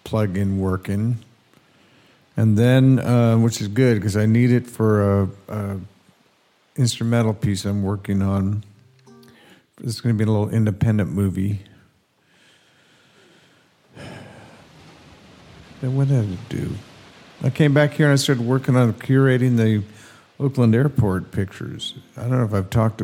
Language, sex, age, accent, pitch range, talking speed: English, male, 50-69, American, 100-125 Hz, 135 wpm